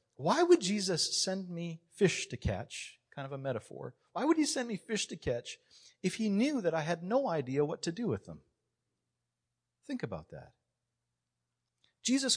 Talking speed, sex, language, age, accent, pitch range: 180 wpm, male, English, 40-59, American, 105-165 Hz